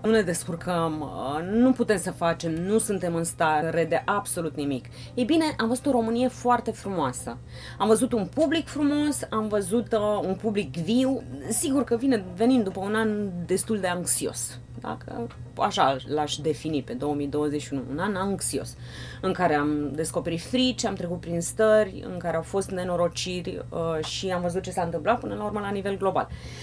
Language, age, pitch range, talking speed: Romanian, 30-49, 155-245 Hz, 170 wpm